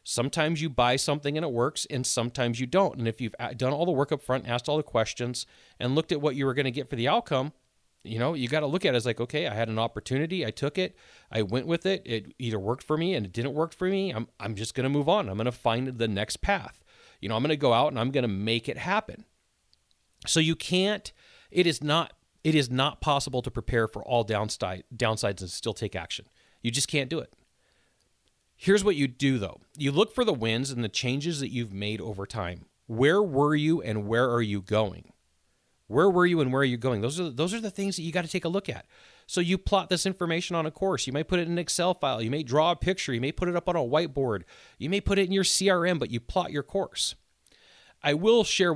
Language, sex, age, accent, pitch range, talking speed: English, male, 30-49, American, 115-165 Hz, 265 wpm